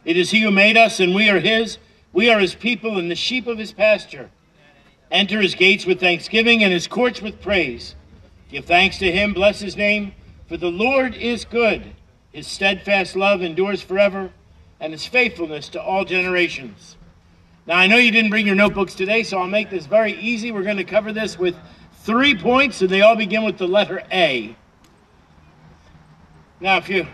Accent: American